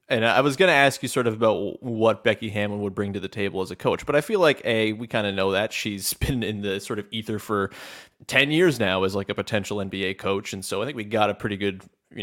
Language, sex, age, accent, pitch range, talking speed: English, male, 30-49, American, 100-140 Hz, 285 wpm